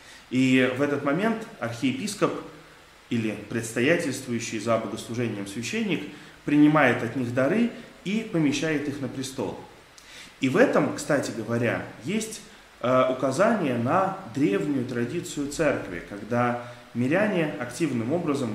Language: Russian